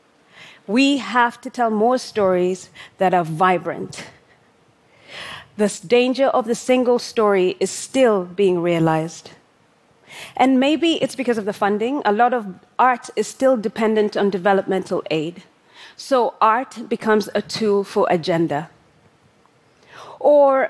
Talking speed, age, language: 130 wpm, 30-49, Arabic